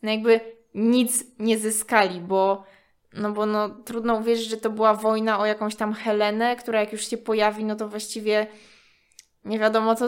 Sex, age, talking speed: female, 20-39, 165 wpm